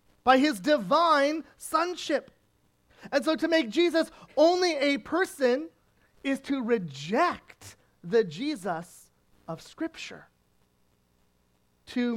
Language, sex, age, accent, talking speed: English, male, 30-49, American, 100 wpm